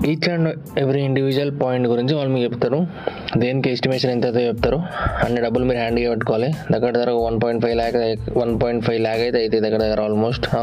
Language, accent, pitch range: Telugu, native, 115-125 Hz